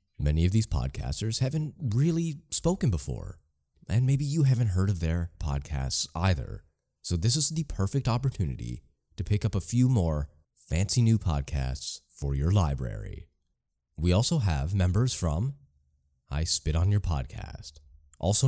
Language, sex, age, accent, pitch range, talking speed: English, male, 30-49, American, 75-110 Hz, 150 wpm